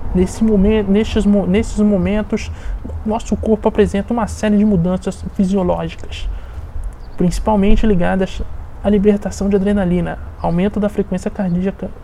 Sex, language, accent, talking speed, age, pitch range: male, Portuguese, Brazilian, 100 wpm, 20-39, 165-200 Hz